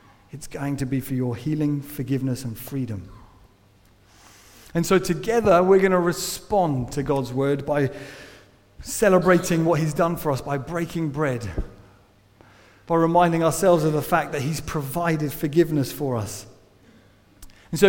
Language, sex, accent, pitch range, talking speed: English, male, British, 130-190 Hz, 150 wpm